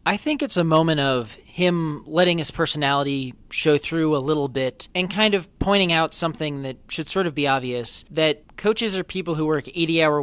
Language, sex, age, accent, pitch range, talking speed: English, male, 30-49, American, 140-175 Hz, 200 wpm